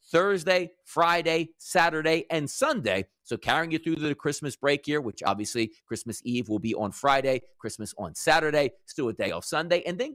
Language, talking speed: English, 185 wpm